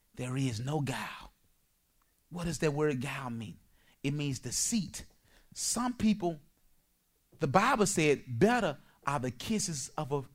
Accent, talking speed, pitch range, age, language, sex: American, 135 wpm, 130-205 Hz, 30-49, English, male